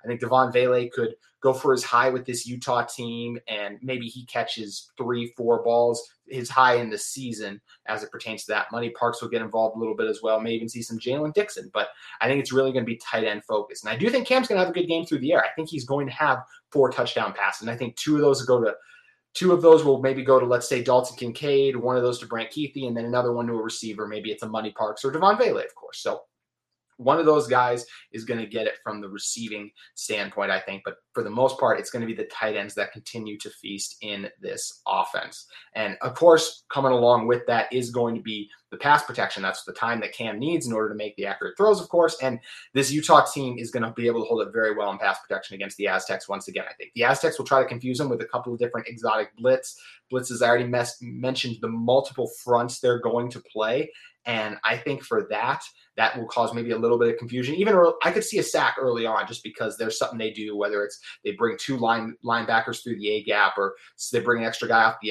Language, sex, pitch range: English, male, 115-135 Hz